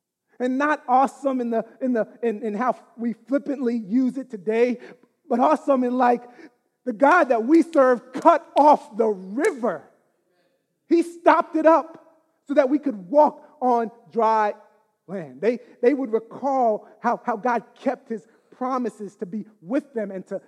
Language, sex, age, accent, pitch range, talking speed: English, male, 30-49, American, 210-275 Hz, 165 wpm